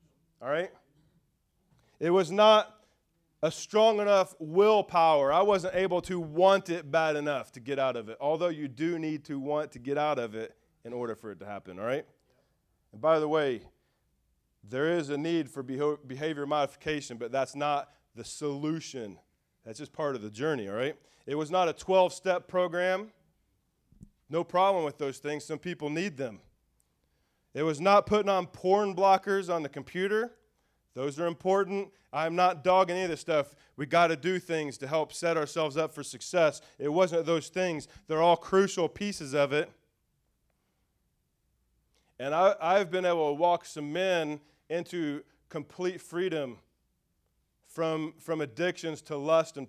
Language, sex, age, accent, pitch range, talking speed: English, male, 30-49, American, 145-180 Hz, 170 wpm